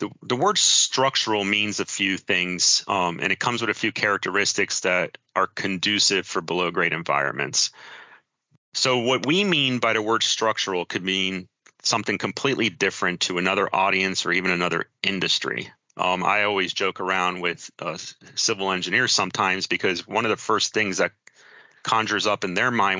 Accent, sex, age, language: American, male, 30-49, English